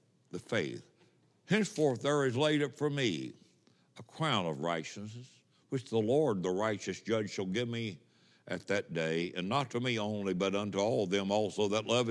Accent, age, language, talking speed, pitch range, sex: American, 60-79, English, 185 wpm, 105-160 Hz, male